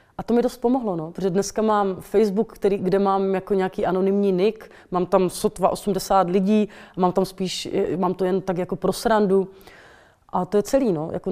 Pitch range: 180-200 Hz